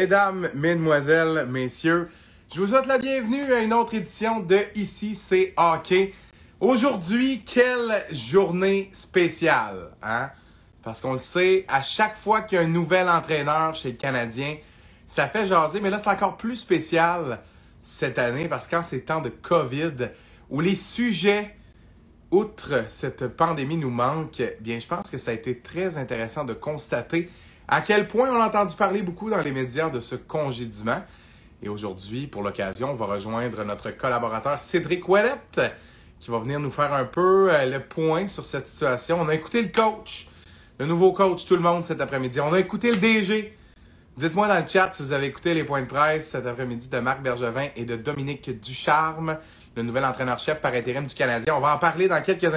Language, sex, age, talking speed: French, male, 30-49, 185 wpm